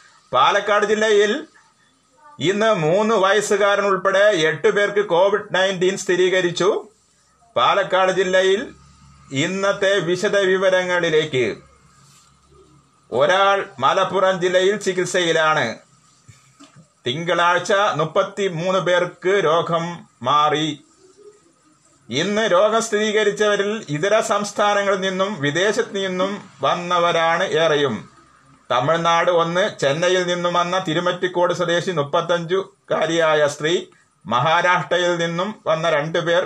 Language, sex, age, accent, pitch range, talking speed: Malayalam, male, 30-49, native, 160-200 Hz, 75 wpm